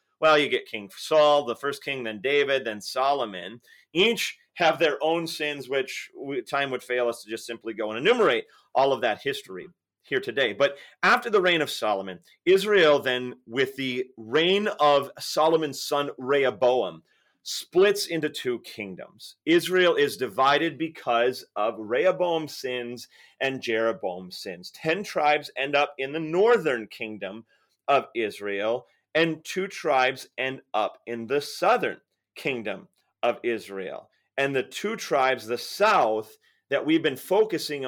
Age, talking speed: 30-49, 150 wpm